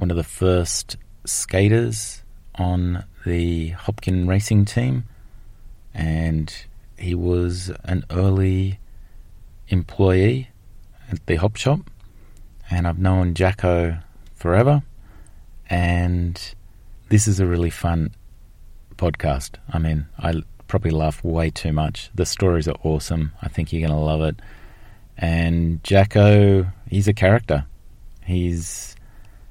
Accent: Australian